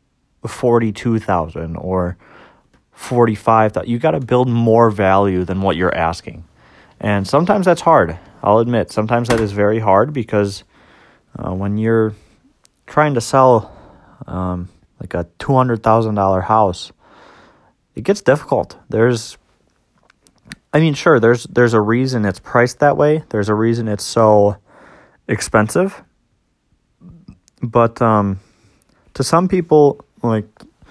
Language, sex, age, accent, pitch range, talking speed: English, male, 30-49, American, 100-125 Hz, 145 wpm